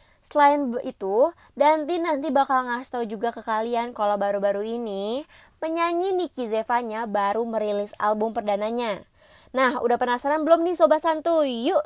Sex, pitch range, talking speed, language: female, 200-295 Hz, 140 wpm, Indonesian